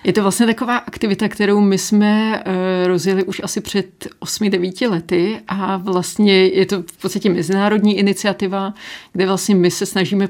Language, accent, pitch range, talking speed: Czech, native, 175-190 Hz, 155 wpm